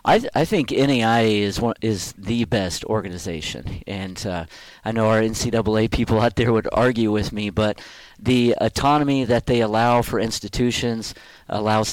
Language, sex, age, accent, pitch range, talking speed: English, male, 40-59, American, 100-115 Hz, 165 wpm